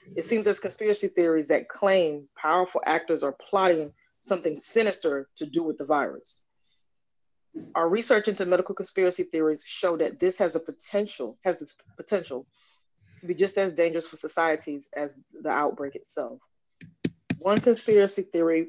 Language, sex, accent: English, female, American